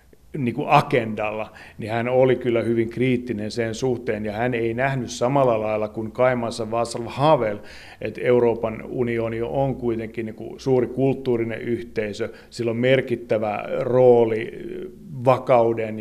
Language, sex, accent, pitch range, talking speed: Finnish, male, native, 105-120 Hz, 120 wpm